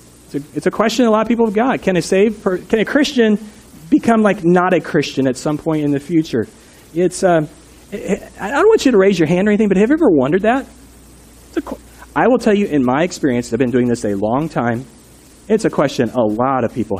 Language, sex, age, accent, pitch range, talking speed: English, male, 40-59, American, 155-210 Hz, 245 wpm